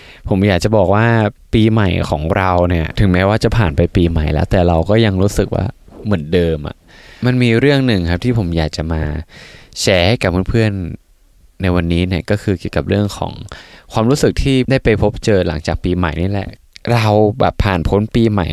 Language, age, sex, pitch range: Thai, 20-39, male, 95-125 Hz